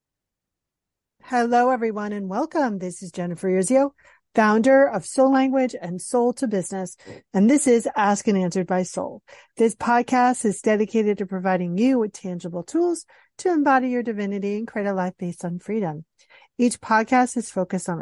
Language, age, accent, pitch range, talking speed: English, 40-59, American, 190-245 Hz, 165 wpm